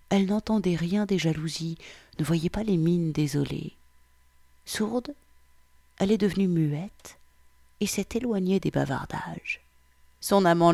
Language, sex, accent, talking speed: French, female, French, 130 wpm